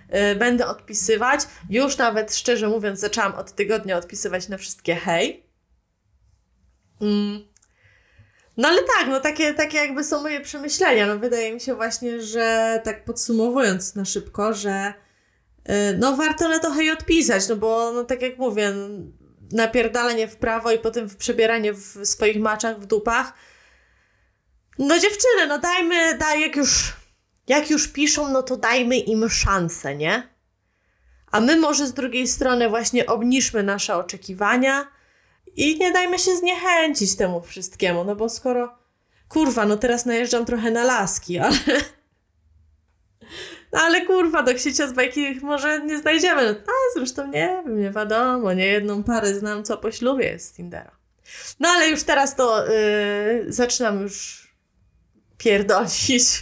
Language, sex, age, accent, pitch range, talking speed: Polish, female, 20-39, native, 205-280 Hz, 145 wpm